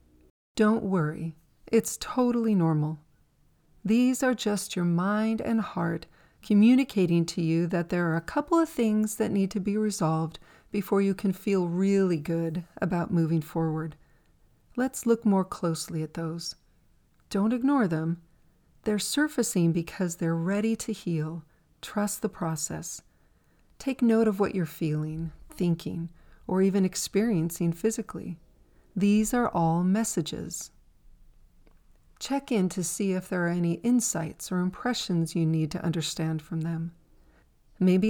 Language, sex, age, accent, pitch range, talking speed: English, female, 40-59, American, 165-215 Hz, 140 wpm